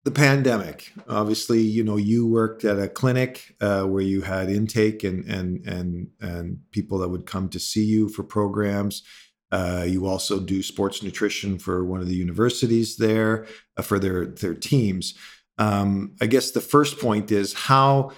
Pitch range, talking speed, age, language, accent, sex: 95-115 Hz, 175 wpm, 50-69, English, American, male